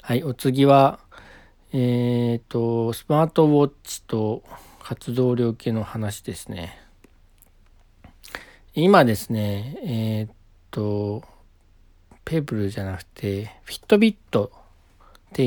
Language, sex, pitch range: Japanese, male, 110-155 Hz